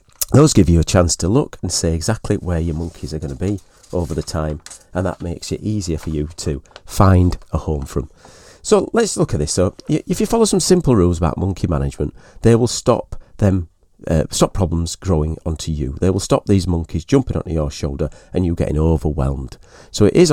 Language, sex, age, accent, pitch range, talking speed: English, male, 40-59, British, 80-110 Hz, 215 wpm